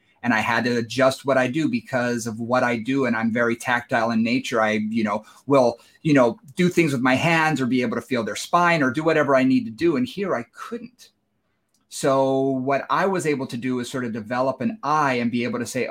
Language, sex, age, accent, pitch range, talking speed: English, male, 30-49, American, 120-150 Hz, 250 wpm